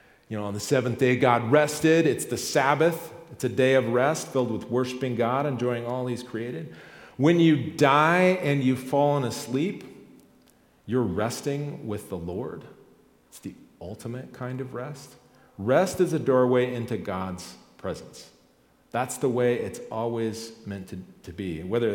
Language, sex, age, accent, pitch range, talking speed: English, male, 40-59, American, 110-135 Hz, 160 wpm